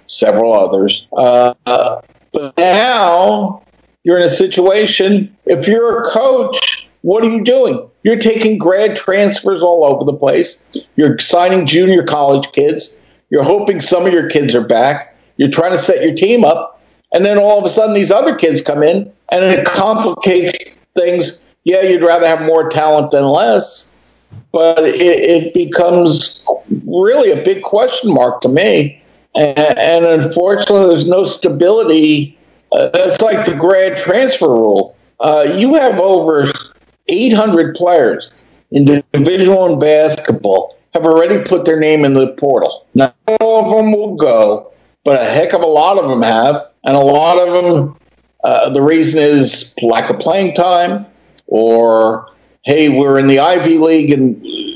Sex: male